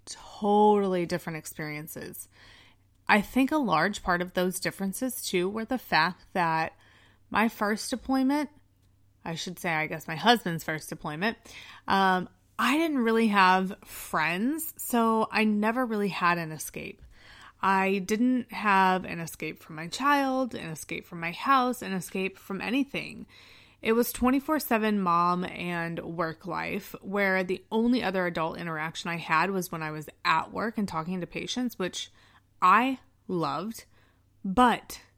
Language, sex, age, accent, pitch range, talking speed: English, female, 20-39, American, 160-220 Hz, 150 wpm